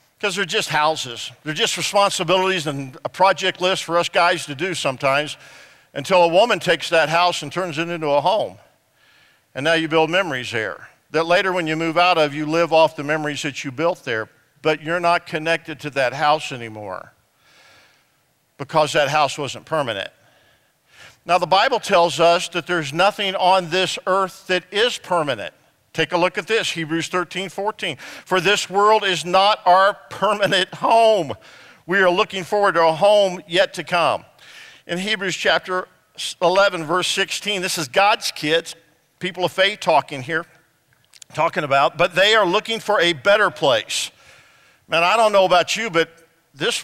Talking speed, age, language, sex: 175 wpm, 50-69, English, male